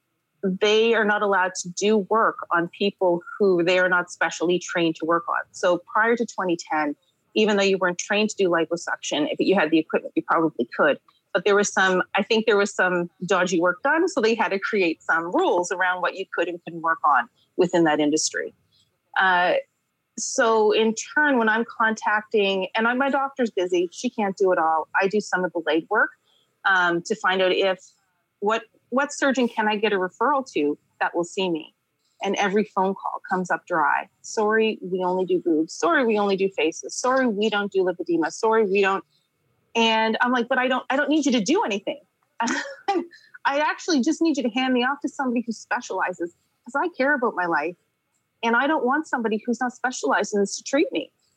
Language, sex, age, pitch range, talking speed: English, female, 30-49, 180-245 Hz, 210 wpm